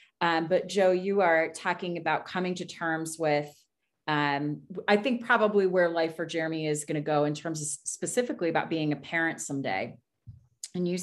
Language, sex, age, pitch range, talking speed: English, female, 30-49, 155-200 Hz, 185 wpm